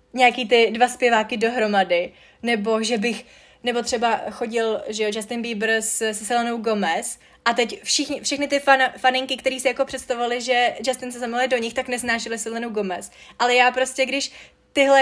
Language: Czech